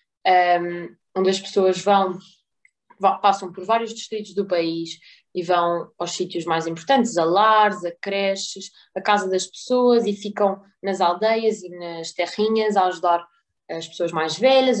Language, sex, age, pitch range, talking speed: Portuguese, female, 20-39, 180-210 Hz, 155 wpm